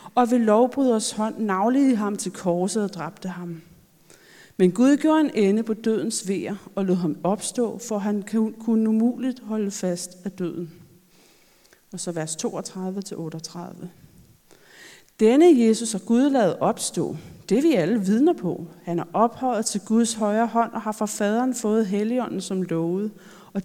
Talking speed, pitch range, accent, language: 155 wpm, 185-235 Hz, native, Danish